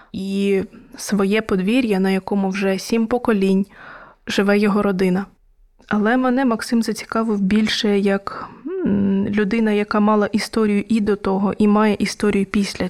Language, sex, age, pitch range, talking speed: Ukrainian, female, 20-39, 200-220 Hz, 130 wpm